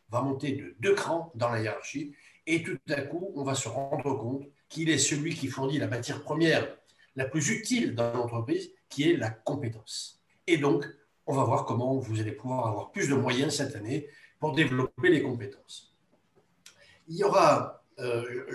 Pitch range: 120-165 Hz